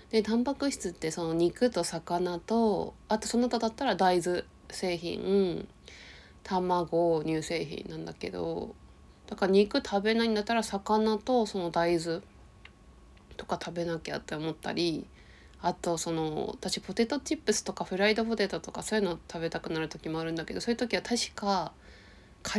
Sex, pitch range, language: female, 170-220 Hz, Japanese